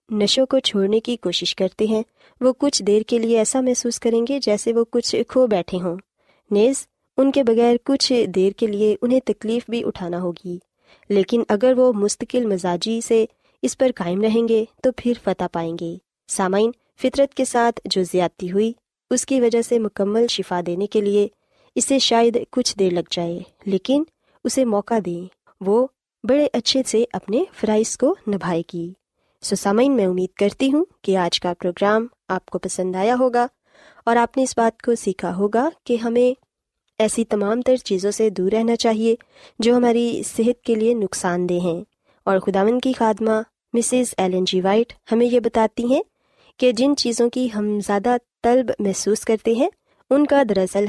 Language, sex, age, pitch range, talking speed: Urdu, female, 20-39, 195-250 Hz, 180 wpm